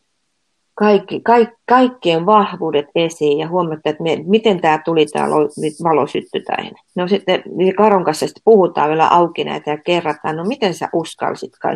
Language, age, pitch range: Finnish, 30-49, 155-205 Hz